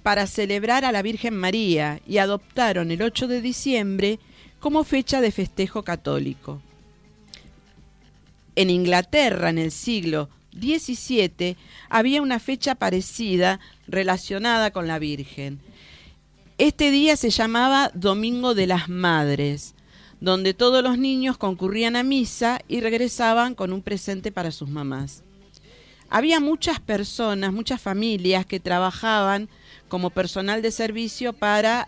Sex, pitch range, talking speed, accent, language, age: female, 180-235 Hz, 125 wpm, Argentinian, Spanish, 40-59